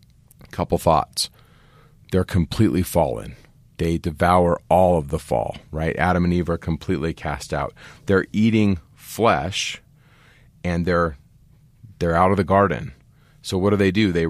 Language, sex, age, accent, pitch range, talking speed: English, male, 30-49, American, 80-100 Hz, 145 wpm